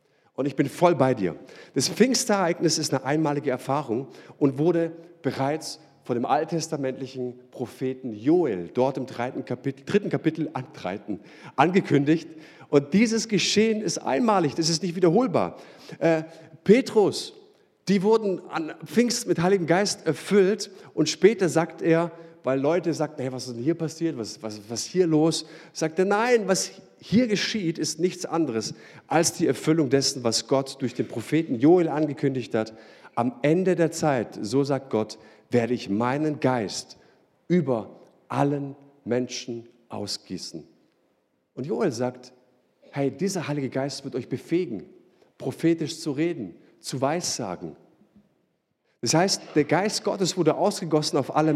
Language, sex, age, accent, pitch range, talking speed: German, male, 50-69, German, 130-175 Hz, 145 wpm